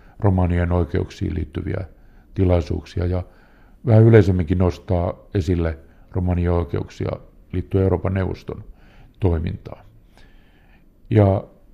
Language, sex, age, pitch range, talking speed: Finnish, male, 50-69, 90-105 Hz, 80 wpm